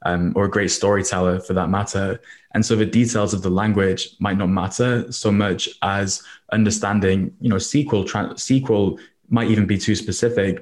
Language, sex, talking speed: English, male, 180 wpm